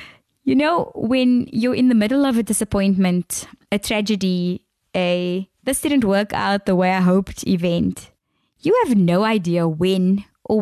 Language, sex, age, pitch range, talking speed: English, female, 20-39, 180-245 Hz, 160 wpm